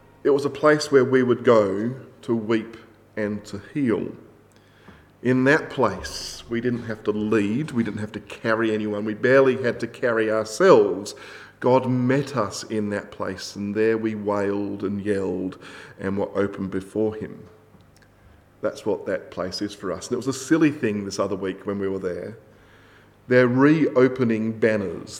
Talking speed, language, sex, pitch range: 175 wpm, English, male, 100-115 Hz